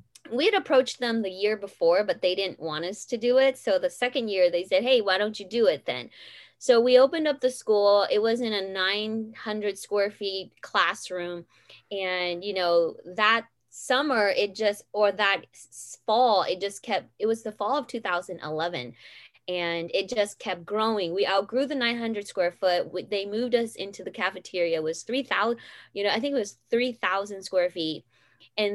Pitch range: 185-235 Hz